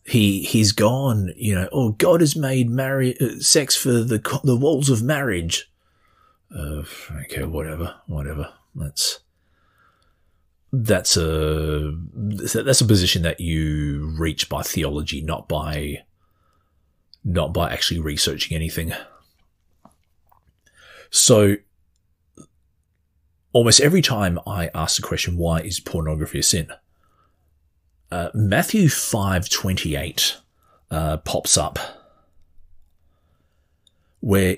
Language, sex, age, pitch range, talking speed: English, male, 30-49, 80-105 Hz, 100 wpm